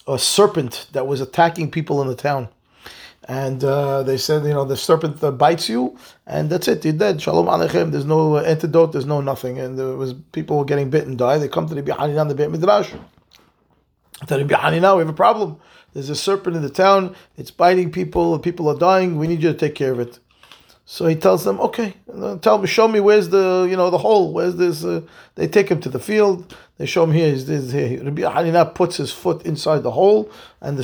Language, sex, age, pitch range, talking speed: English, male, 30-49, 140-180 Hz, 220 wpm